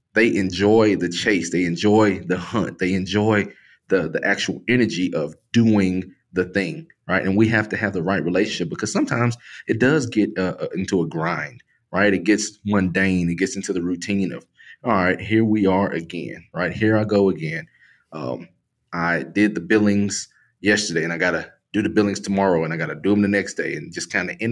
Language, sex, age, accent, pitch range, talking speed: English, male, 30-49, American, 95-110 Hz, 210 wpm